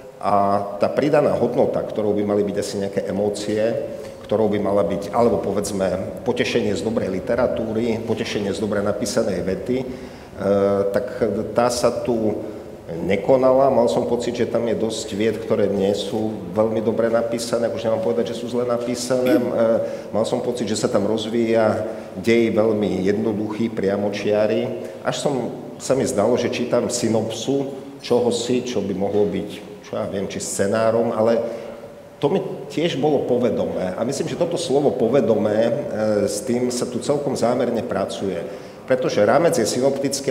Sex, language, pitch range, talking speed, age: male, Slovak, 100-120 Hz, 155 wpm, 50-69